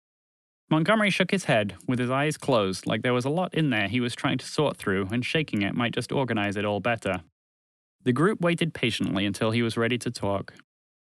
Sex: male